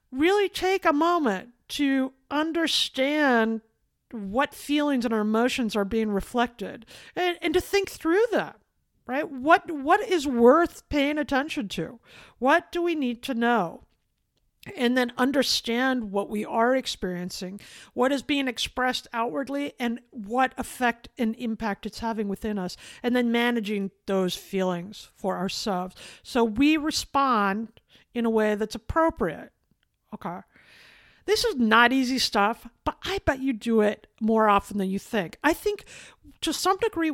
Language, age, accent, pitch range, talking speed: English, 50-69, American, 230-305 Hz, 150 wpm